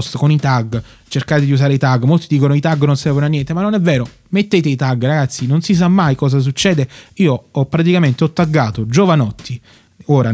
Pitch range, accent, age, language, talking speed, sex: 135-170 Hz, native, 30-49, Italian, 215 wpm, male